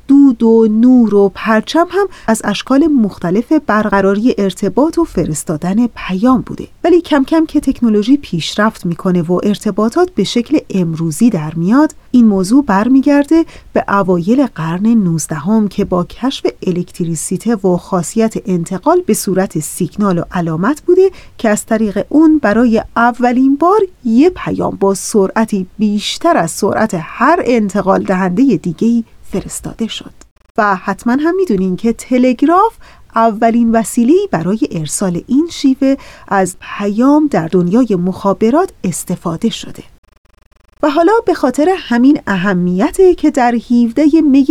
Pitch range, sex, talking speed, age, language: 190-275 Hz, female, 135 wpm, 30-49, Persian